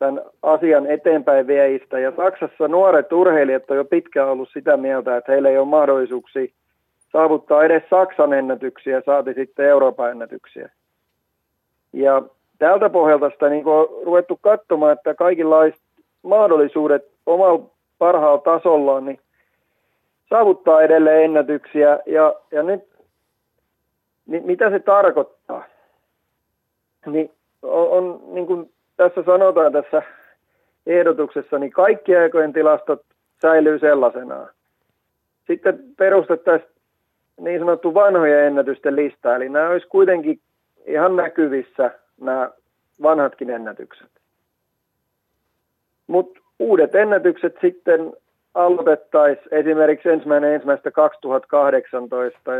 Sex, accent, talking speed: male, native, 105 wpm